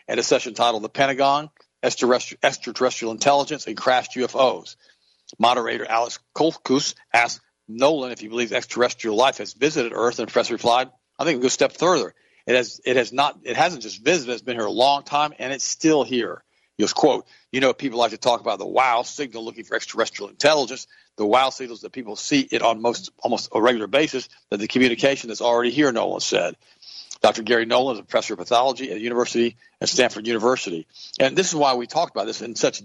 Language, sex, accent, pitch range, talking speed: English, male, American, 115-140 Hz, 220 wpm